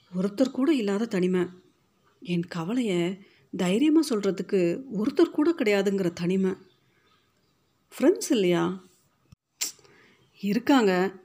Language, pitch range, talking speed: Tamil, 180-245 Hz, 80 wpm